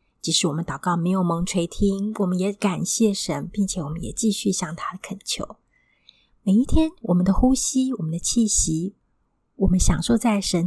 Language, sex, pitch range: Chinese, female, 175-205 Hz